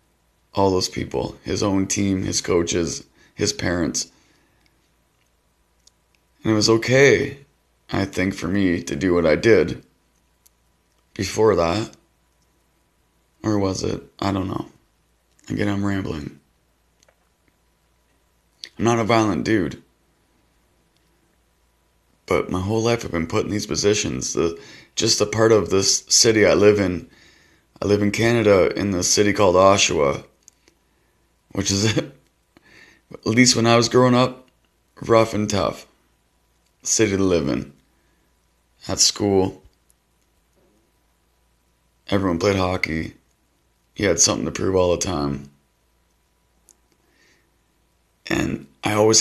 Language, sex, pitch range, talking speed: English, male, 80-105 Hz, 120 wpm